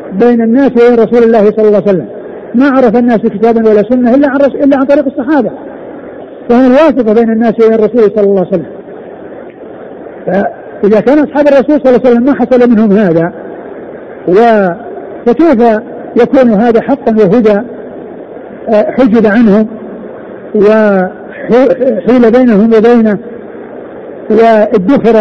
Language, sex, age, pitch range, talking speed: Arabic, male, 50-69, 215-245 Hz, 130 wpm